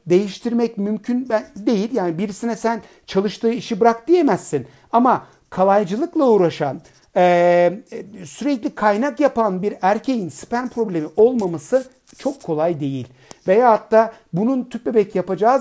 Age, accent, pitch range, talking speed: 60-79, native, 170-245 Hz, 115 wpm